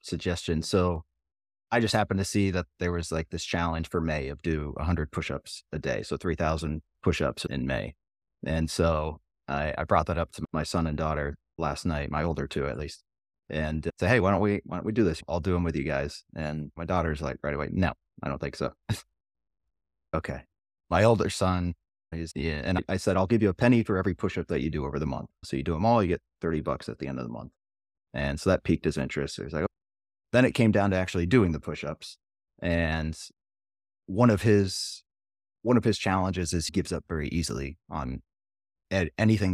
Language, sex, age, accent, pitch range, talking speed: English, male, 30-49, American, 75-95 Hz, 220 wpm